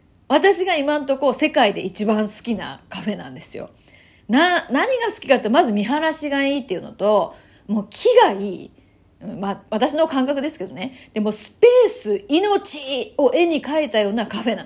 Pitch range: 205-310 Hz